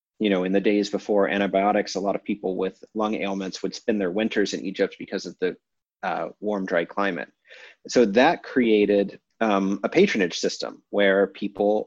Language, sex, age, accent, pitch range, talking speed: English, male, 30-49, American, 100-120 Hz, 180 wpm